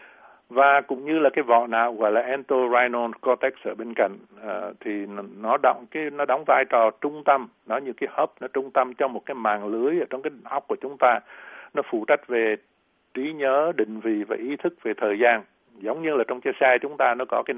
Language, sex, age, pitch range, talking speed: Vietnamese, male, 60-79, 115-130 Hz, 235 wpm